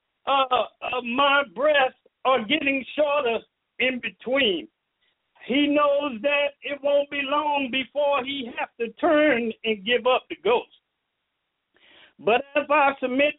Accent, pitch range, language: American, 255-295 Hz, English